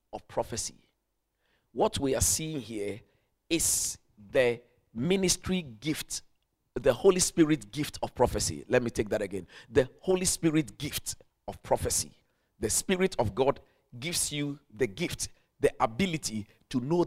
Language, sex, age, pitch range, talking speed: English, male, 50-69, 115-165 Hz, 140 wpm